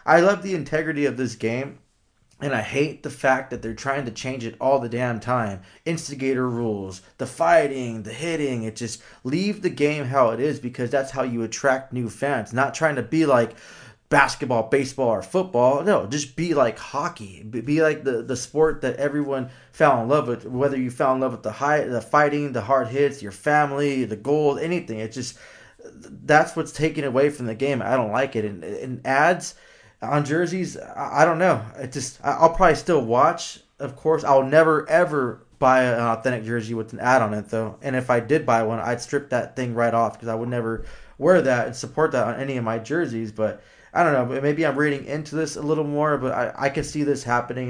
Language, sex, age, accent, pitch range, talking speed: English, male, 20-39, American, 120-145 Hz, 215 wpm